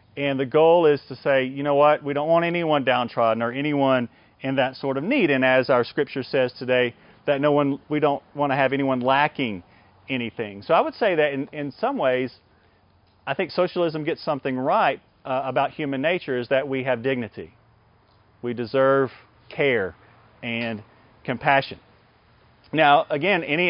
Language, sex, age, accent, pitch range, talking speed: English, male, 40-59, American, 115-145 Hz, 175 wpm